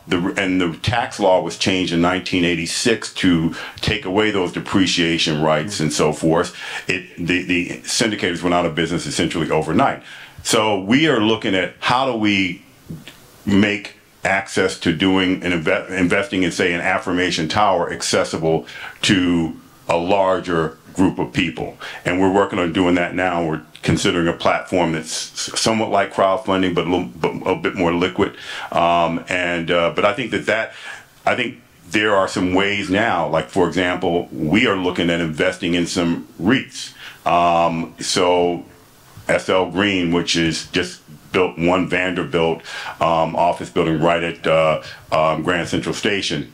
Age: 50-69